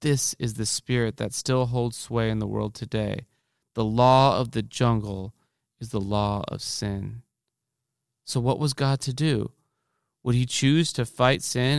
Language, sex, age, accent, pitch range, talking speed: English, male, 30-49, American, 115-140 Hz, 175 wpm